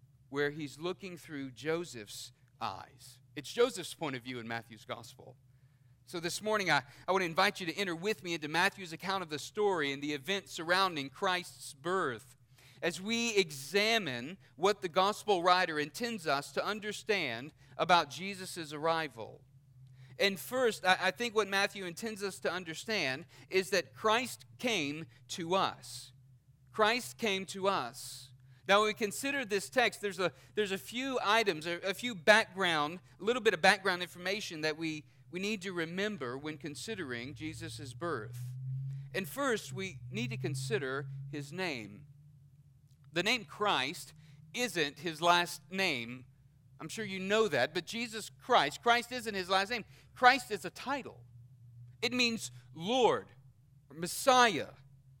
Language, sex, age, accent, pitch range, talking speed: English, male, 40-59, American, 130-195 Hz, 155 wpm